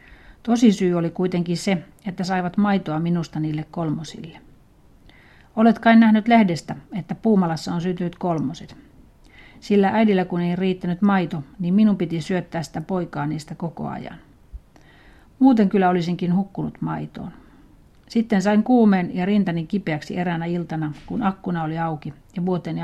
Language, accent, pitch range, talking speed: Finnish, native, 165-195 Hz, 140 wpm